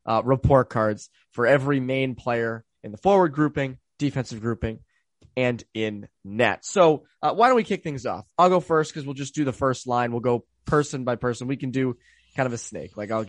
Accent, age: American, 20-39